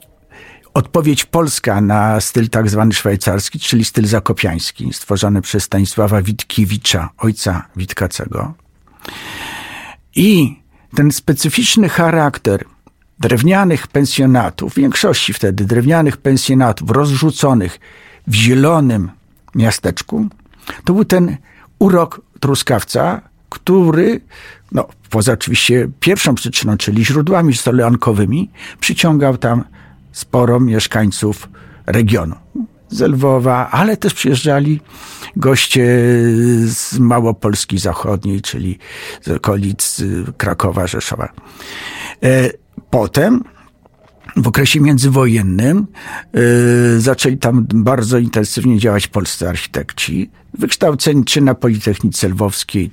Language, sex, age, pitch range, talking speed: Polish, male, 50-69, 105-140 Hz, 90 wpm